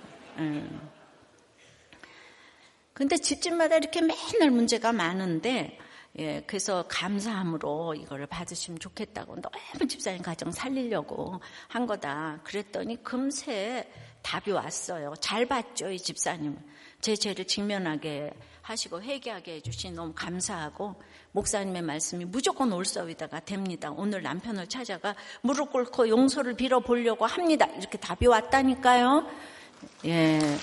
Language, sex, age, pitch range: Korean, female, 60-79, 185-285 Hz